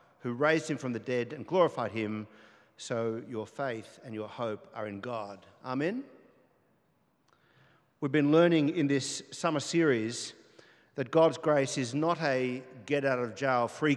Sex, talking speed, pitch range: male, 140 wpm, 120-160 Hz